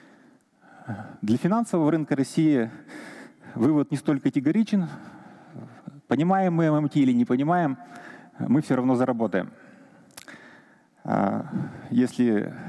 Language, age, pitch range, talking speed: Russian, 30-49, 115-155 Hz, 90 wpm